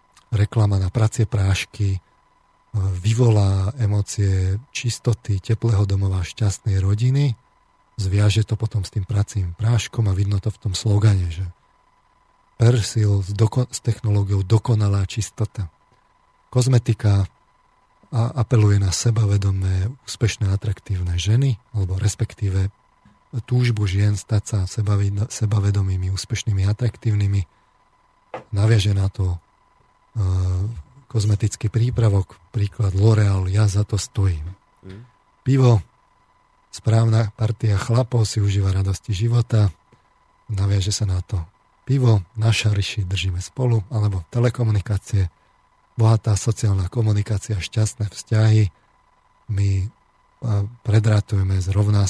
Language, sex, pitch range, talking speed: Slovak, male, 100-110 Hz, 100 wpm